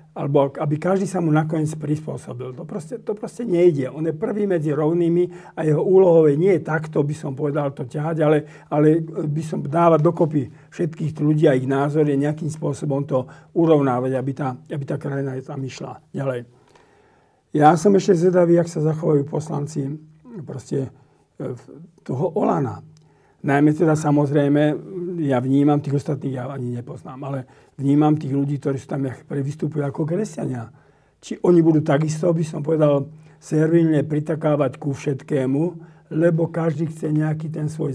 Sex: male